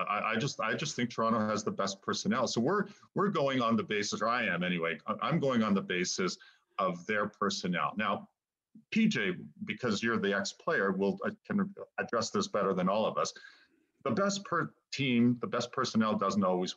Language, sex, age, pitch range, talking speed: English, male, 40-59, 120-205 Hz, 190 wpm